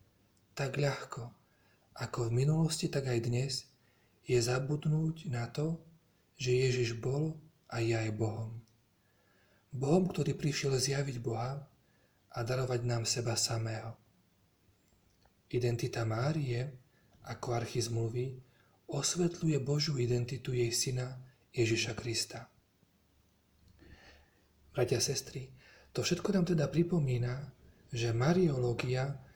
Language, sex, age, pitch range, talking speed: Slovak, male, 40-59, 115-140 Hz, 100 wpm